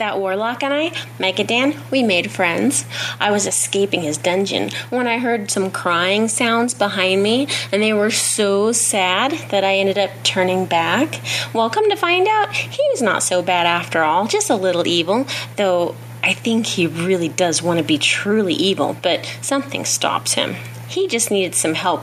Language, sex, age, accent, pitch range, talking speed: English, female, 30-49, American, 185-245 Hz, 190 wpm